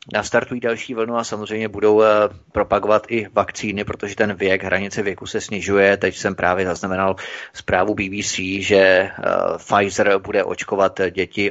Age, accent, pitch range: 30-49, native, 100-135 Hz